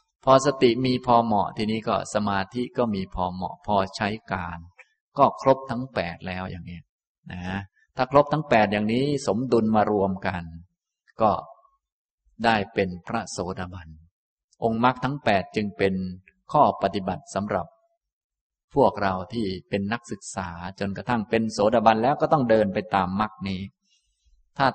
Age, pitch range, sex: 20-39, 95-115 Hz, male